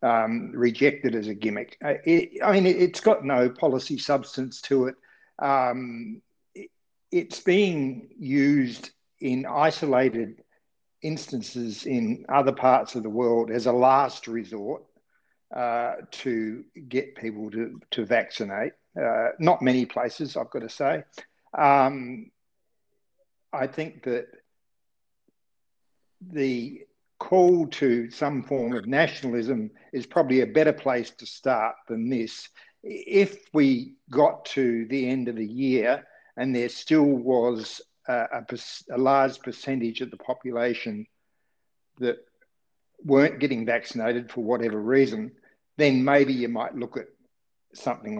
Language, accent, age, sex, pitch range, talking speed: English, Australian, 60-79, male, 120-155 Hz, 125 wpm